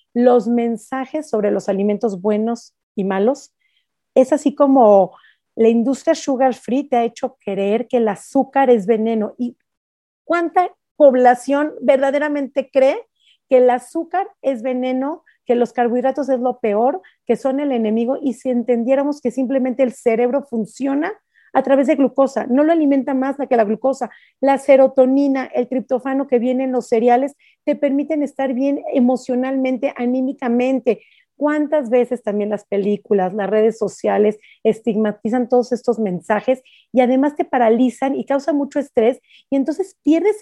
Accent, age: Mexican, 40-59